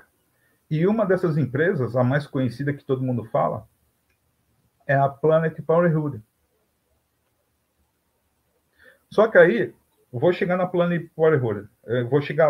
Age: 50-69